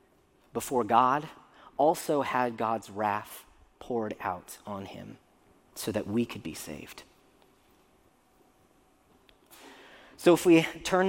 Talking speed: 110 wpm